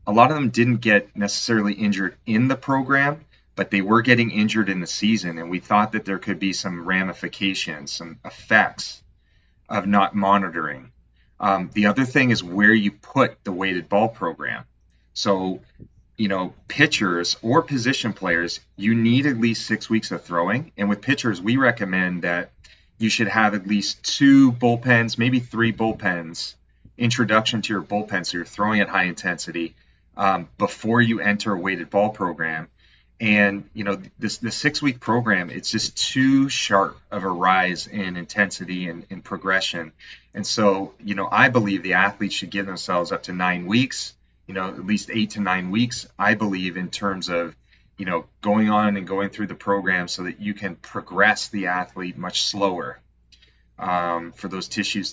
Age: 30-49